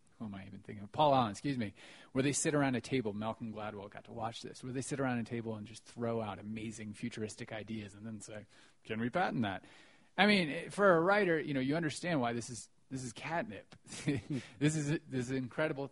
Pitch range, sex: 110-140 Hz, male